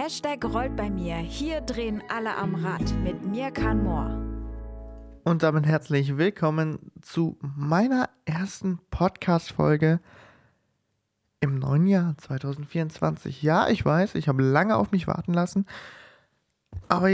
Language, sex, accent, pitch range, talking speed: German, male, German, 150-185 Hz, 125 wpm